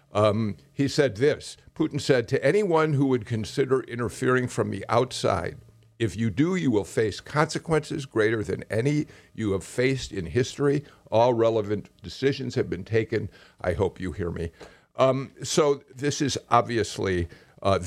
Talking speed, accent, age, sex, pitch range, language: 160 wpm, American, 50-69, male, 105-135 Hz, English